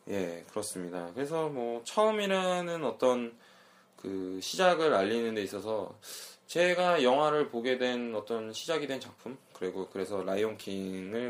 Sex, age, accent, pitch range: male, 20-39, native, 110-175 Hz